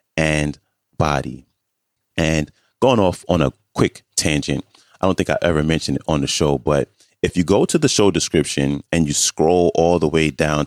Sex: male